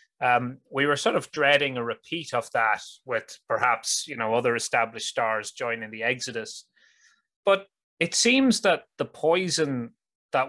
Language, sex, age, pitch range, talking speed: English, male, 30-49, 120-160 Hz, 155 wpm